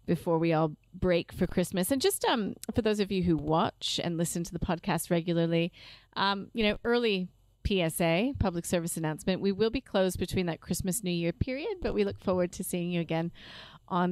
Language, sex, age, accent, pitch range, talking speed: English, female, 30-49, American, 165-205 Hz, 205 wpm